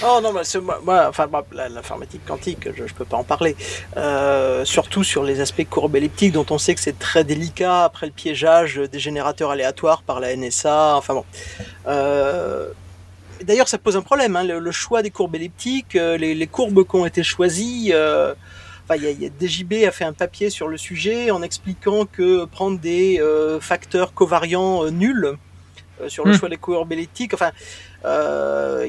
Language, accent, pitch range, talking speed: French, French, 155-200 Hz, 190 wpm